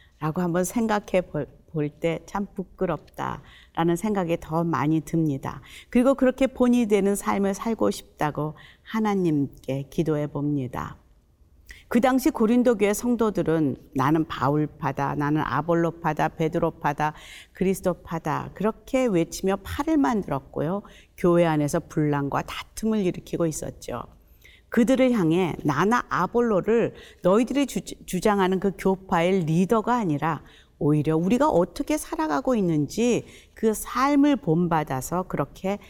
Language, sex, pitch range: Korean, female, 155-215 Hz